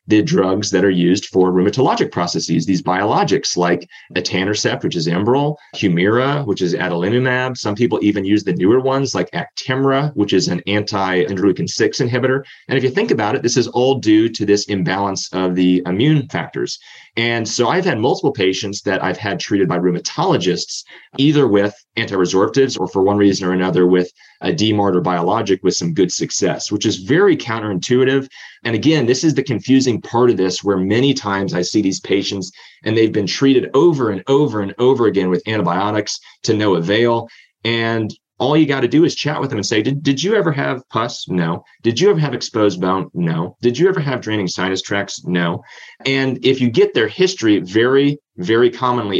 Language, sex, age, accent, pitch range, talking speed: English, male, 30-49, American, 95-130 Hz, 195 wpm